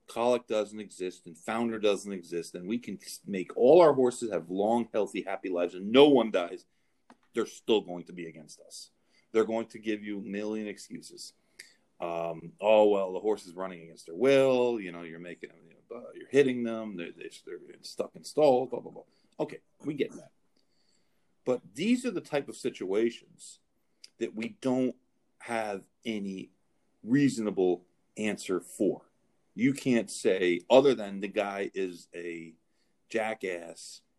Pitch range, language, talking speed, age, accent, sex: 90-125 Hz, English, 165 wpm, 40-59, American, male